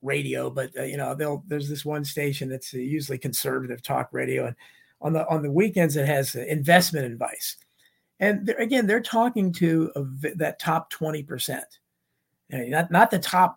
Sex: male